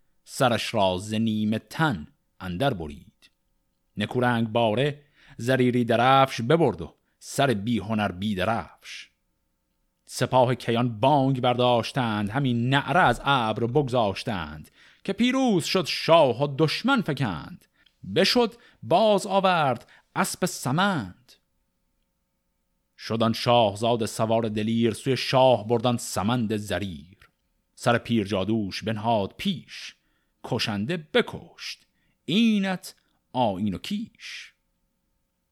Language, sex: Persian, male